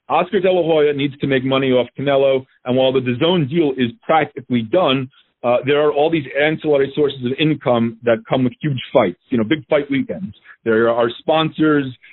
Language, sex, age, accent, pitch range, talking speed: English, male, 40-59, American, 130-165 Hz, 200 wpm